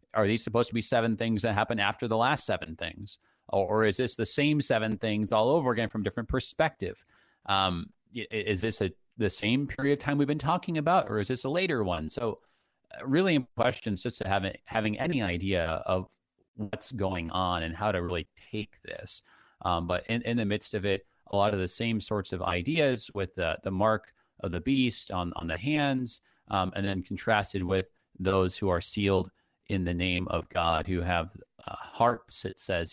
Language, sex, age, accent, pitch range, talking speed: English, male, 30-49, American, 90-110 Hz, 205 wpm